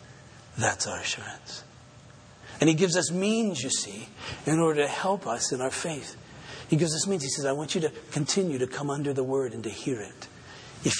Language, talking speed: English, 215 wpm